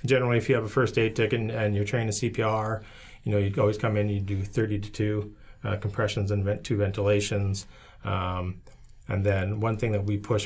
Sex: male